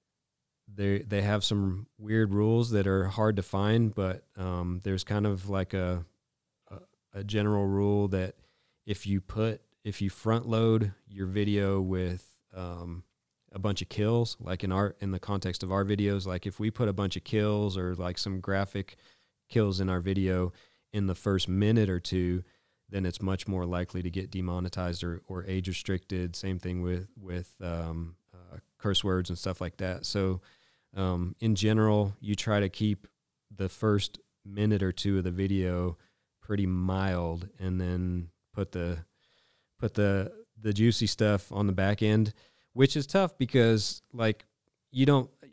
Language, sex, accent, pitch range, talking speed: English, male, American, 95-105 Hz, 175 wpm